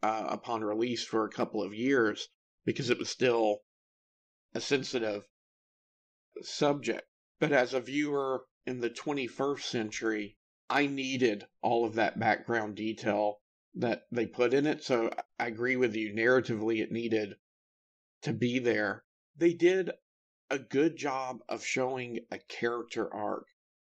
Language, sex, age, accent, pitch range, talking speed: English, male, 50-69, American, 115-130 Hz, 140 wpm